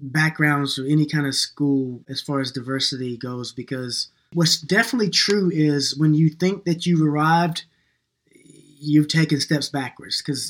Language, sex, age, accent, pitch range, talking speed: English, male, 20-39, American, 135-160 Hz, 155 wpm